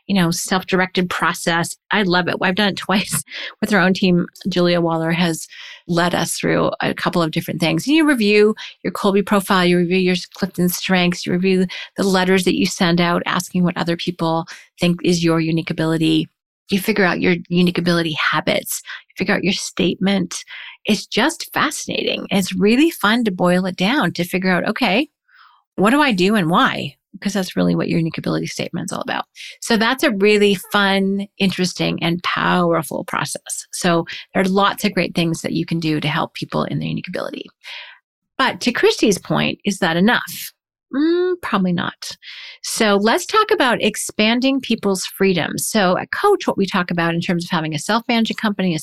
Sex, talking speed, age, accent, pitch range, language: female, 190 wpm, 30-49, American, 175-215 Hz, English